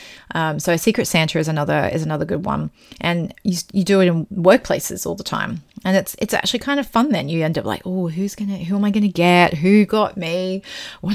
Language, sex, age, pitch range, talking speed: English, female, 30-49, 170-215 Hz, 240 wpm